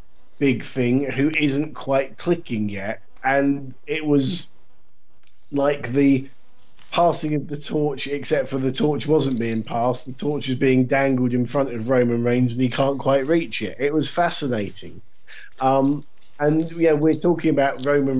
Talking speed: 160 wpm